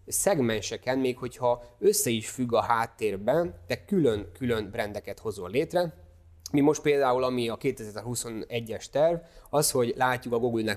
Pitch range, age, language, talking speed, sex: 110-130 Hz, 20-39, Hungarian, 145 wpm, male